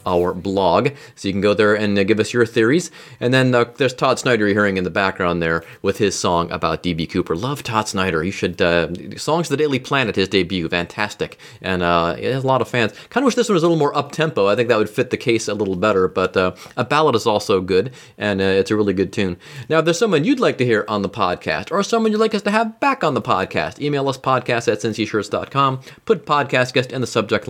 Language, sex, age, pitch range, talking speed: English, male, 30-49, 100-145 Hz, 260 wpm